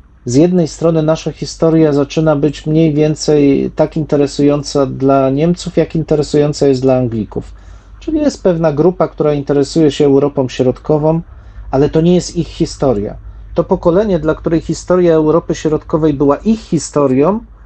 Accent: native